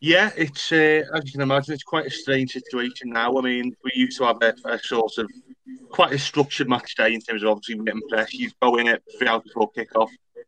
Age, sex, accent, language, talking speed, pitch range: 20-39, male, British, English, 240 wpm, 110-135 Hz